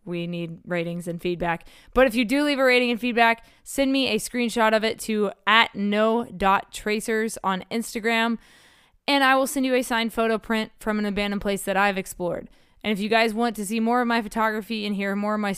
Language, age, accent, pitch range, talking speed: English, 20-39, American, 185-220 Hz, 225 wpm